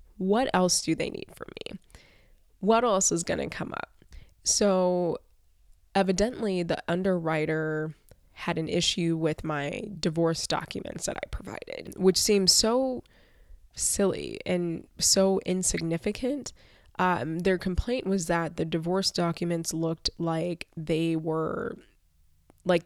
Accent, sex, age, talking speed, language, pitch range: American, female, 20-39, 125 wpm, English, 160-190 Hz